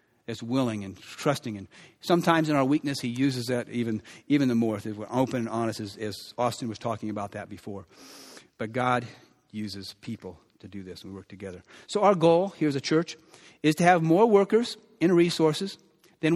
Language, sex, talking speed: English, male, 200 wpm